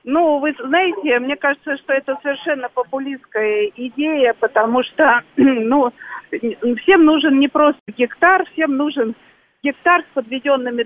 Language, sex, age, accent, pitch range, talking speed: Russian, female, 50-69, native, 235-290 Hz, 125 wpm